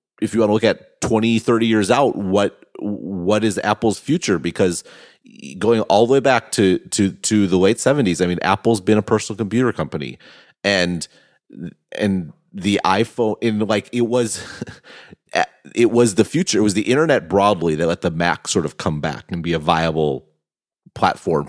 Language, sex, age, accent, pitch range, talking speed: English, male, 30-49, American, 90-115 Hz, 180 wpm